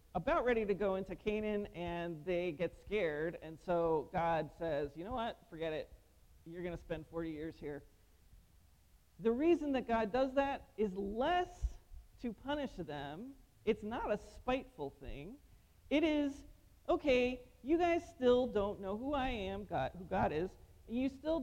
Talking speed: 170 wpm